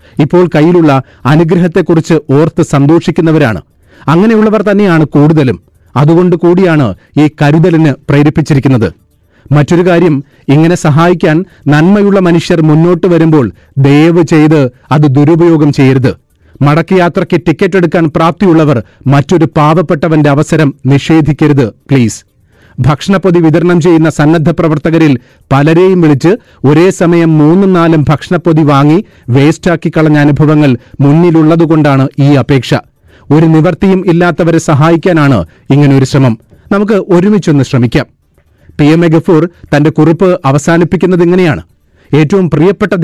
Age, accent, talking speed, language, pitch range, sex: 30-49, native, 100 wpm, Malayalam, 140-170 Hz, male